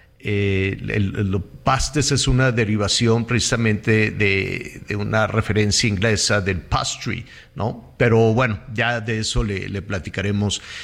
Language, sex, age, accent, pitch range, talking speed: Spanish, male, 50-69, Mexican, 115-140 Hz, 140 wpm